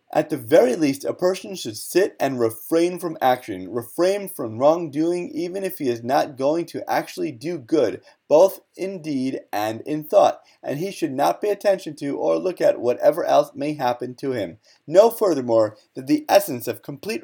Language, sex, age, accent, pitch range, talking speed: English, male, 30-49, American, 130-195 Hz, 190 wpm